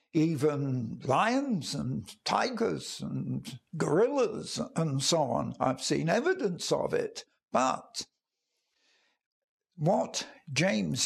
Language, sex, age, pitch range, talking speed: English, male, 60-79, 155-215 Hz, 90 wpm